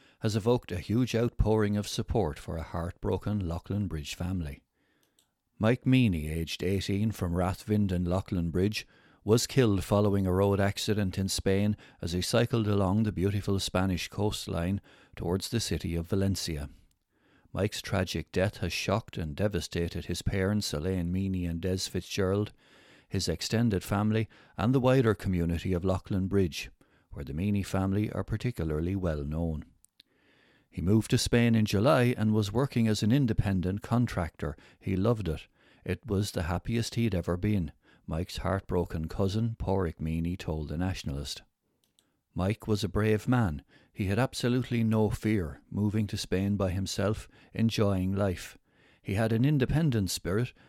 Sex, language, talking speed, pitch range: male, English, 150 wpm, 90-110 Hz